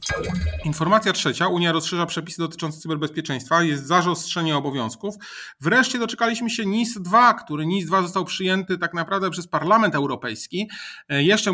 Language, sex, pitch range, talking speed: Polish, male, 150-175 Hz, 125 wpm